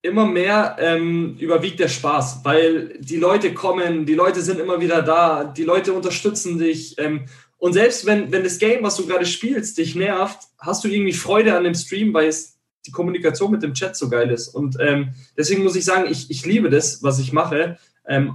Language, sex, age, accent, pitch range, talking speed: German, male, 20-39, German, 135-175 Hz, 210 wpm